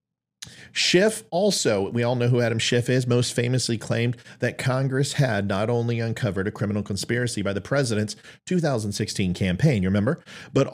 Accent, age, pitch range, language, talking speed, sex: American, 40-59, 100-135 Hz, English, 160 wpm, male